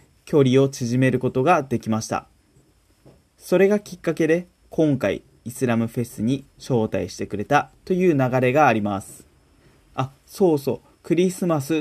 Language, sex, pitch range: Japanese, male, 120-160 Hz